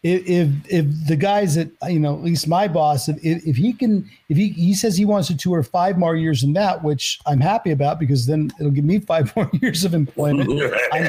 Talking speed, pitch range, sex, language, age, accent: 235 wpm, 150-185 Hz, male, English, 50-69, American